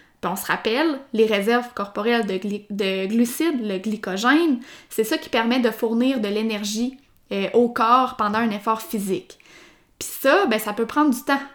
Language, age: French, 20-39